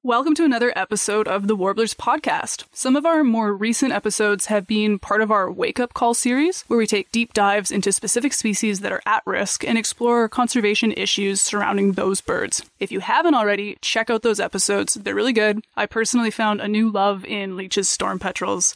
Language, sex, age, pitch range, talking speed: English, female, 20-39, 205-245 Hz, 200 wpm